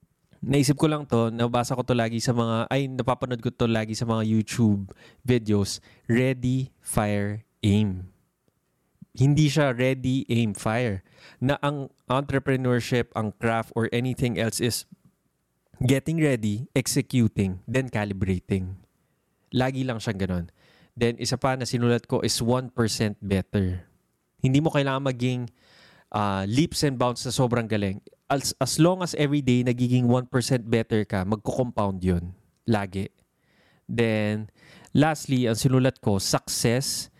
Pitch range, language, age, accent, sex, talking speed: 105-135 Hz, Filipino, 20-39, native, male, 135 wpm